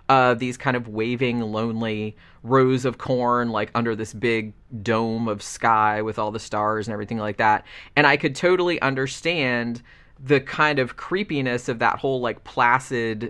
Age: 30-49